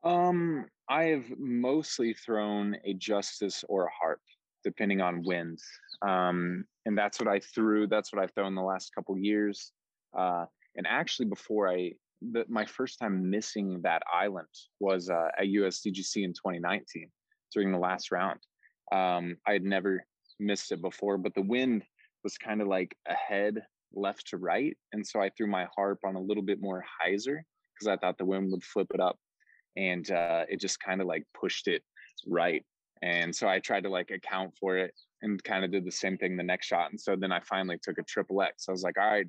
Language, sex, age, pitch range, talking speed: English, male, 20-39, 90-105 Hz, 205 wpm